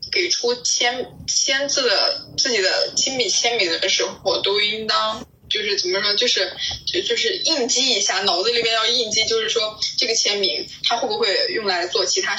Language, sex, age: Chinese, female, 10-29